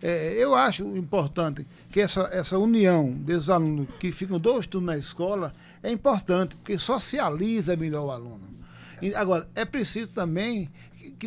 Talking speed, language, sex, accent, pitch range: 155 wpm, Portuguese, male, Brazilian, 165-205 Hz